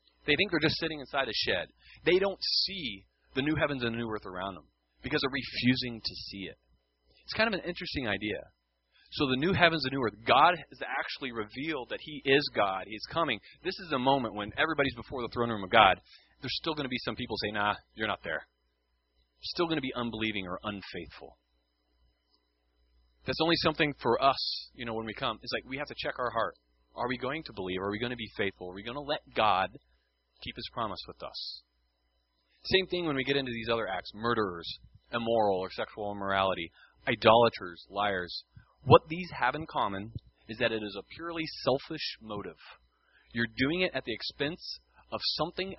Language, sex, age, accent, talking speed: English, male, 30-49, American, 210 wpm